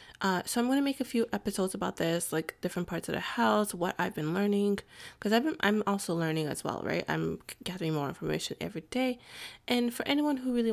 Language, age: English, 20-39